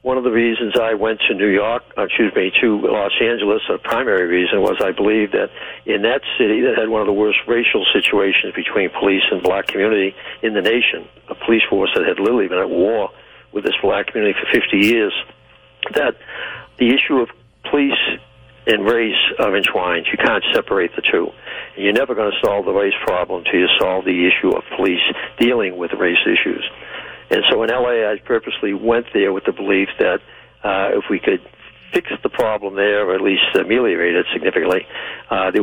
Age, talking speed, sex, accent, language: 60-79, 195 wpm, male, American, English